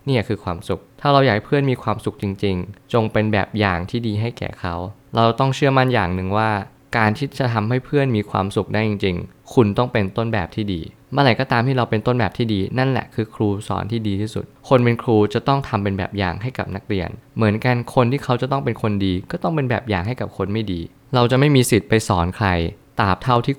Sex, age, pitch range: male, 20-39, 100-125 Hz